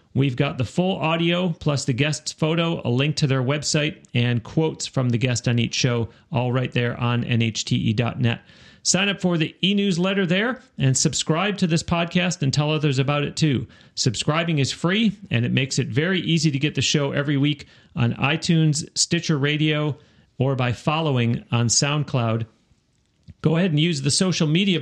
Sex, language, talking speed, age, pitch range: male, English, 180 wpm, 40-59, 125-165 Hz